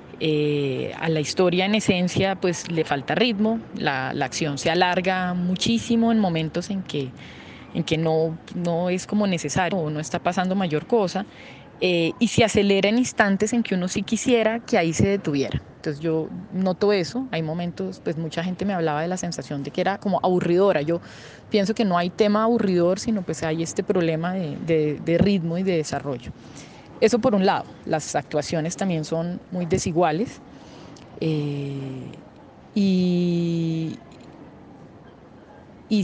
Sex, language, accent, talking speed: female, Spanish, Colombian, 165 wpm